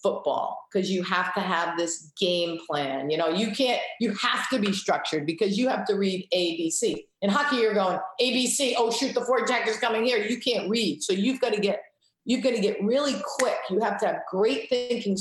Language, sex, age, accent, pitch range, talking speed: English, female, 50-69, American, 170-245 Hz, 215 wpm